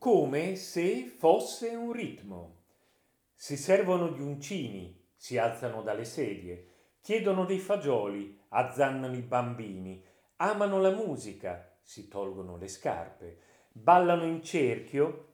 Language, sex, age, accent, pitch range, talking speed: Italian, male, 40-59, native, 120-190 Hz, 115 wpm